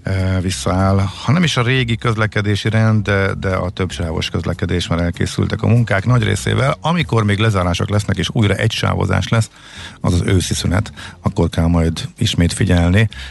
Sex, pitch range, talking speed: male, 85-110 Hz, 165 wpm